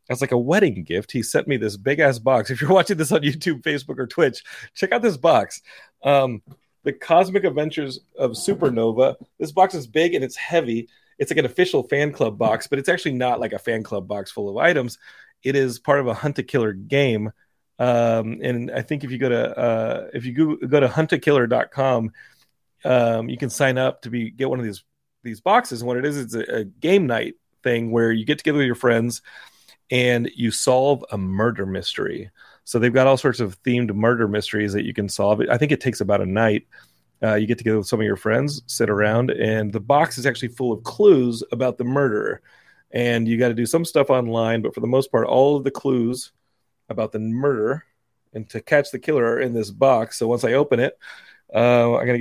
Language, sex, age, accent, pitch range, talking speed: English, male, 30-49, American, 115-140 Hz, 225 wpm